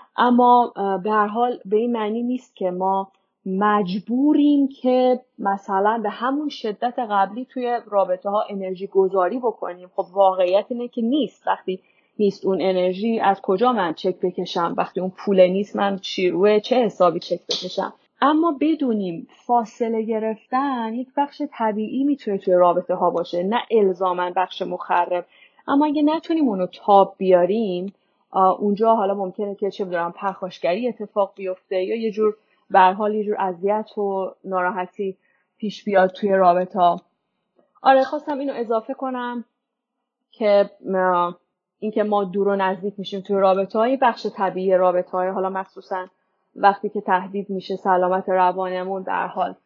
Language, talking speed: English, 145 wpm